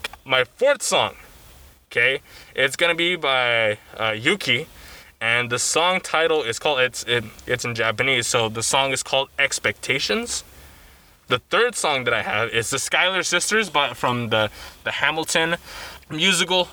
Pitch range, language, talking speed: 105-145 Hz, English, 155 wpm